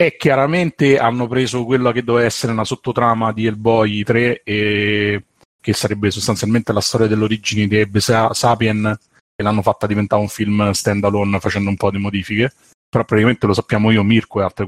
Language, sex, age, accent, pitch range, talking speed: Italian, male, 30-49, native, 105-125 Hz, 180 wpm